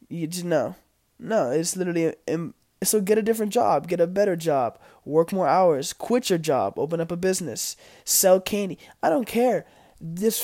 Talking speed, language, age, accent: 185 wpm, English, 20-39, American